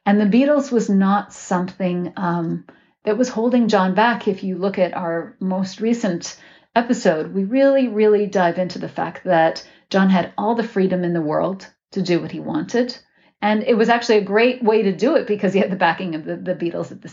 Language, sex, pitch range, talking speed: English, female, 180-235 Hz, 215 wpm